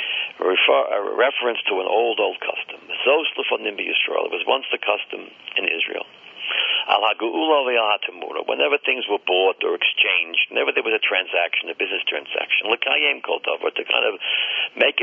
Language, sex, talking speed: English, male, 130 wpm